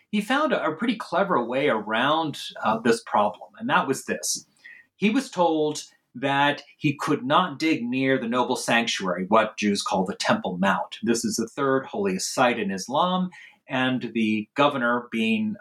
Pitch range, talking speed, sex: 125-205 Hz, 170 wpm, male